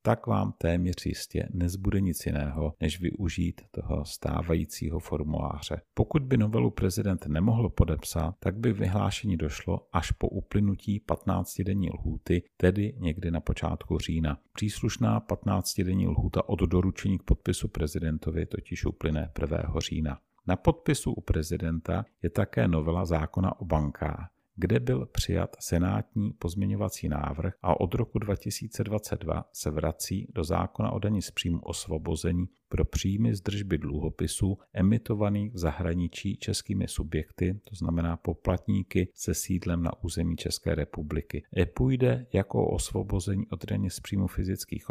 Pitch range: 80-100 Hz